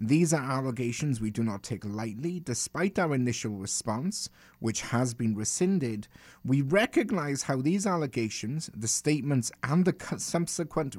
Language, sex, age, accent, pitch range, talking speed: English, male, 30-49, British, 110-145 Hz, 140 wpm